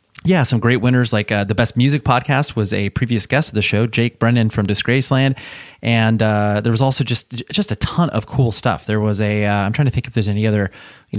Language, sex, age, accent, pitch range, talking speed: English, male, 30-49, American, 105-130 Hz, 265 wpm